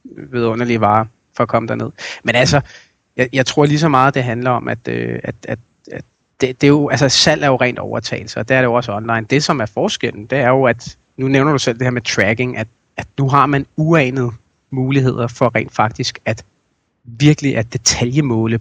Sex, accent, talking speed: male, native, 225 wpm